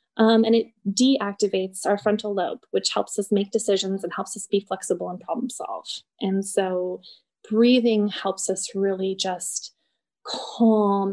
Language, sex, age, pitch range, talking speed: English, female, 20-39, 190-230 Hz, 150 wpm